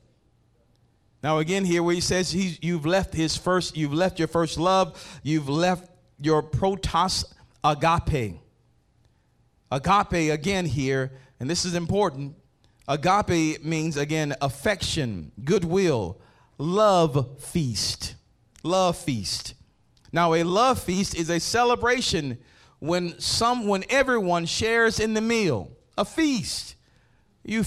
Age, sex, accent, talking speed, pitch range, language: 40-59, male, American, 115 wpm, 150-235 Hz, English